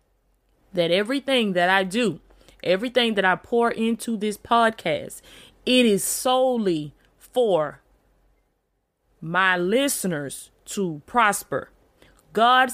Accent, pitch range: American, 180-240 Hz